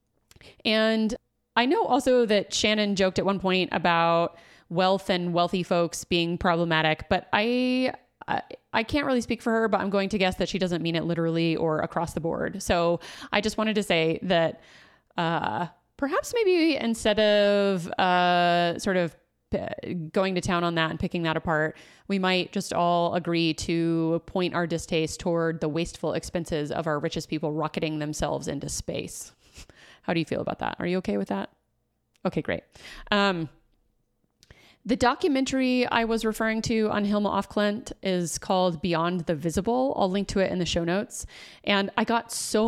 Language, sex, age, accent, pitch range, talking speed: English, female, 30-49, American, 170-205 Hz, 180 wpm